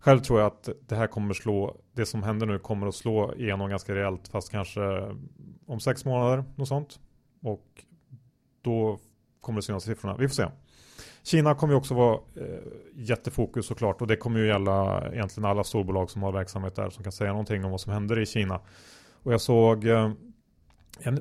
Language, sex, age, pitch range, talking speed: Swedish, male, 30-49, 100-120 Hz, 190 wpm